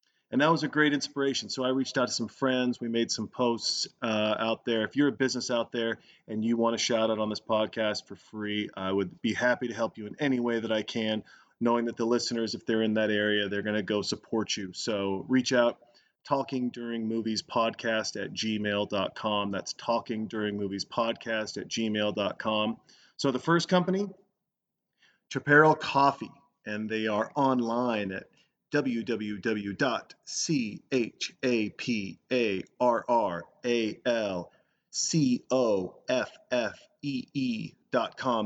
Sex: male